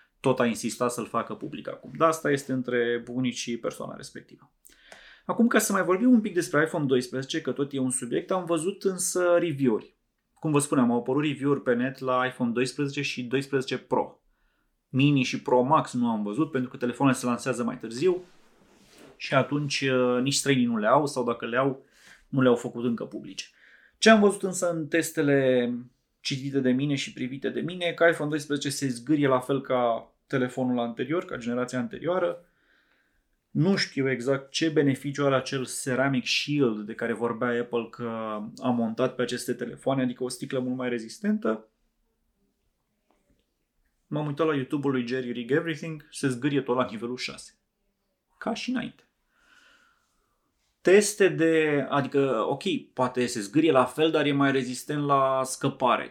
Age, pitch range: 30-49, 125-160 Hz